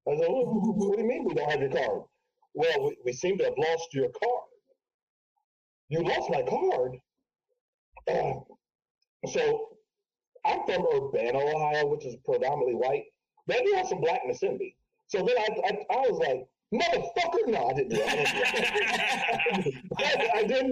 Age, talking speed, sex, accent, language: 40-59, 170 wpm, male, American, English